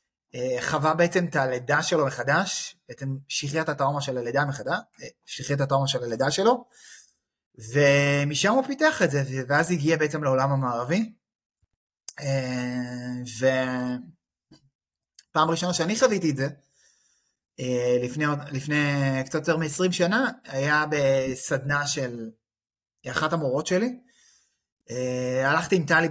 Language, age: Hebrew, 30-49